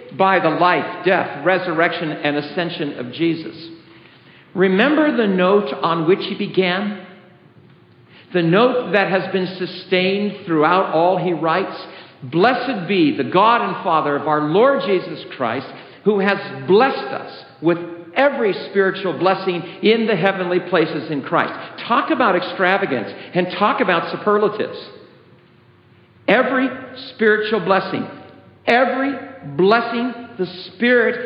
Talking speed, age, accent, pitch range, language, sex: 125 wpm, 50-69, American, 175-215 Hz, English, male